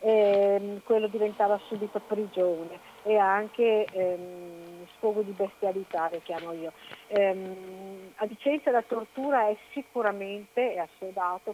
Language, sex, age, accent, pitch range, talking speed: Italian, female, 50-69, native, 180-215 Hz, 120 wpm